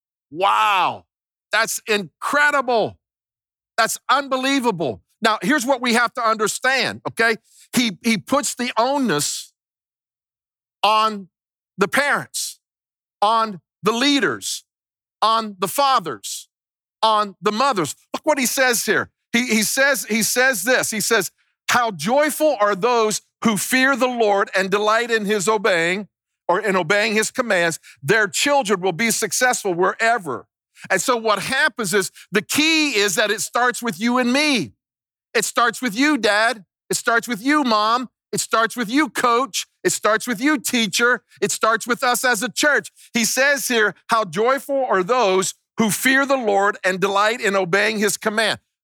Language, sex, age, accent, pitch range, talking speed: English, male, 50-69, American, 200-255 Hz, 155 wpm